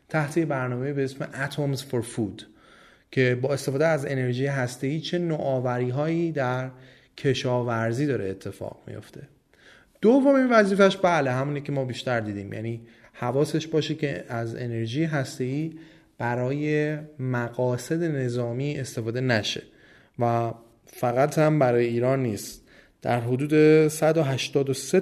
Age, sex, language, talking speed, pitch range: 30-49, male, Persian, 120 wpm, 115-150 Hz